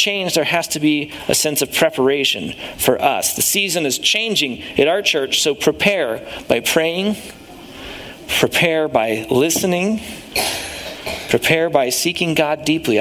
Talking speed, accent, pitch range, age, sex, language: 140 wpm, American, 135-195 Hz, 40-59, male, English